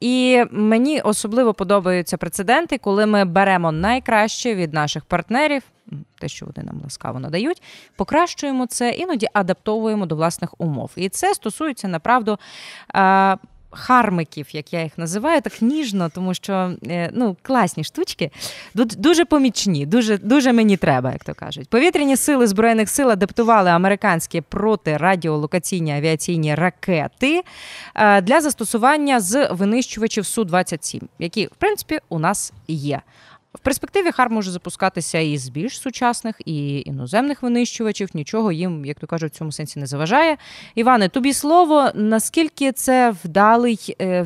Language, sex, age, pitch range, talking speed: Ukrainian, female, 20-39, 175-250 Hz, 135 wpm